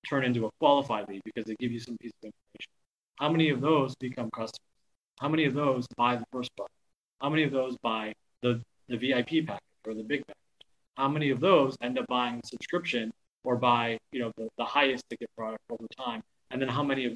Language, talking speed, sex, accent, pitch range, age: English, 225 wpm, male, American, 115-135 Hz, 30-49